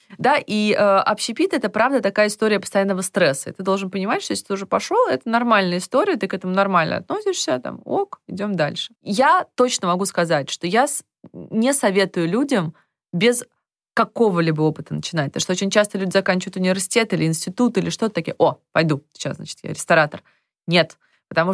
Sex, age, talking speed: female, 20-39, 175 wpm